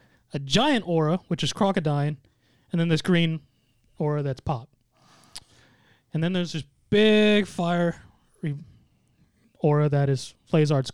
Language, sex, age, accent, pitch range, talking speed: English, male, 20-39, American, 140-170 Hz, 125 wpm